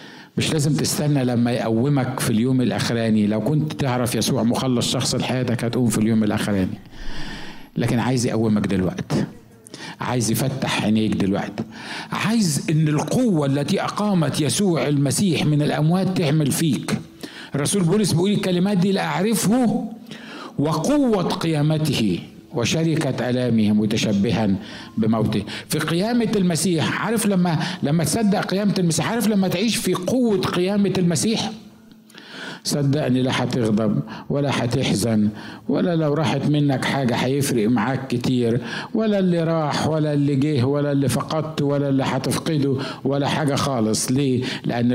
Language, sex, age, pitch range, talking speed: Arabic, male, 50-69, 125-180 Hz, 130 wpm